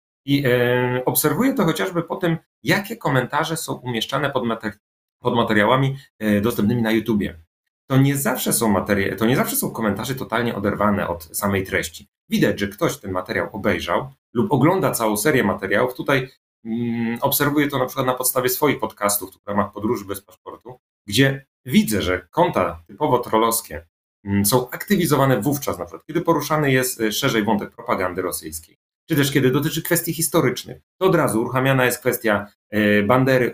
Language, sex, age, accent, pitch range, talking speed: Polish, male, 30-49, native, 100-135 Hz, 160 wpm